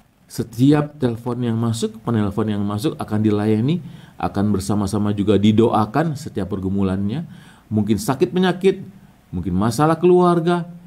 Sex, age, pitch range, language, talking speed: male, 40-59, 105-160 Hz, English, 110 wpm